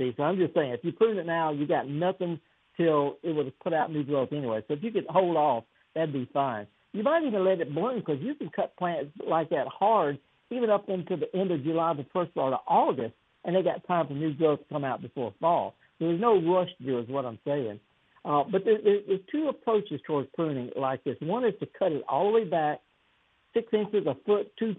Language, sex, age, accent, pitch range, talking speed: English, male, 60-79, American, 145-195 Hz, 245 wpm